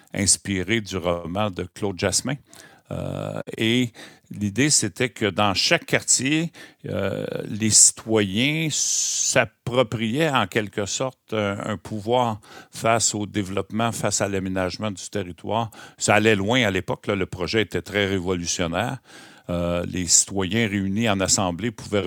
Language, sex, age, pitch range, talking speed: French, male, 60-79, 100-120 Hz, 130 wpm